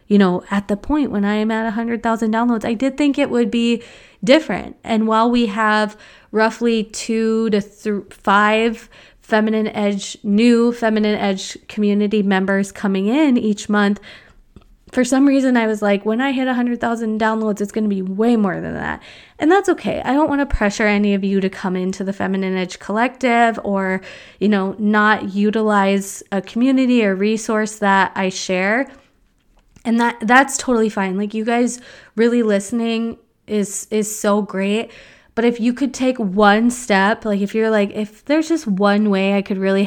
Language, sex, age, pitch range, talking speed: English, female, 20-39, 200-235 Hz, 180 wpm